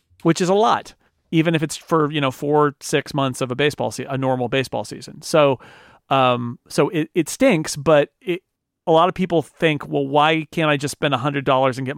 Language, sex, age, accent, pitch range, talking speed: English, male, 40-59, American, 130-165 Hz, 225 wpm